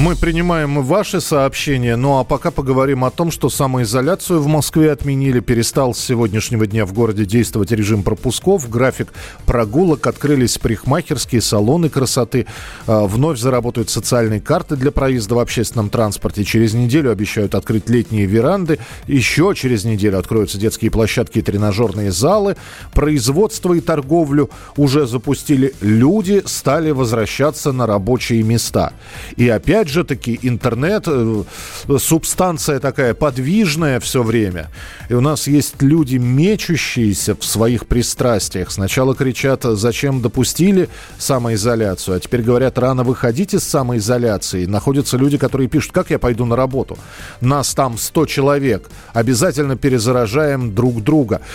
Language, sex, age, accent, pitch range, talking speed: Russian, male, 40-59, native, 115-145 Hz, 130 wpm